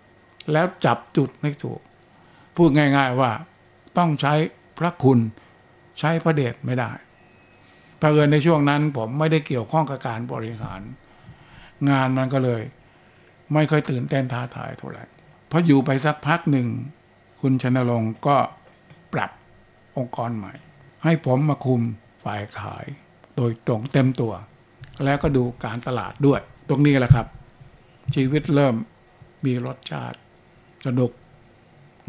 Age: 60-79